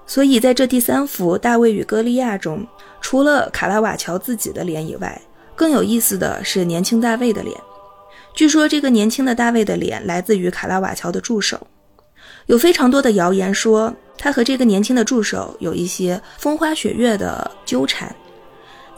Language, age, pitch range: Chinese, 20-39, 190-245 Hz